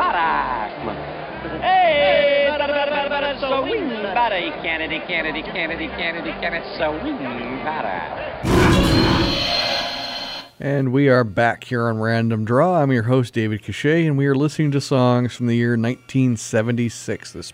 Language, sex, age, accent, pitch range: English, male, 40-59, American, 110-145 Hz